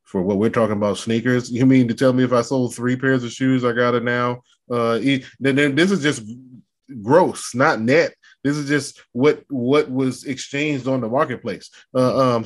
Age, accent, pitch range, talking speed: 20-39, American, 115-135 Hz, 195 wpm